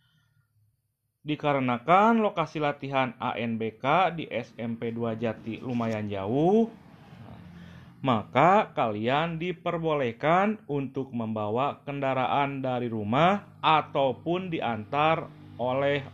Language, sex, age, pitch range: Indonesian, male, 30-49, 115-155 Hz